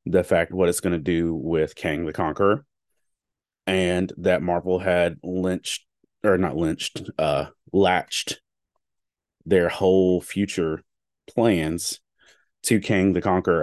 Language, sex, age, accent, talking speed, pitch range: English, male, 30-49, American, 130 wpm, 85-95 Hz